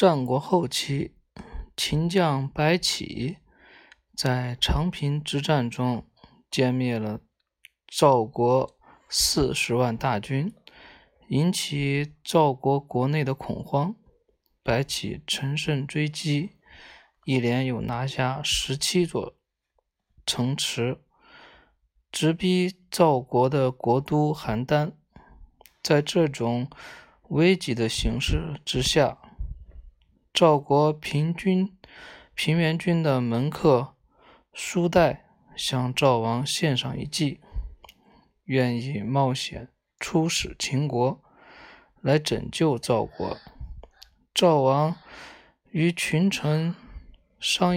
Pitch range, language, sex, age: 125-160 Hz, Chinese, male, 20-39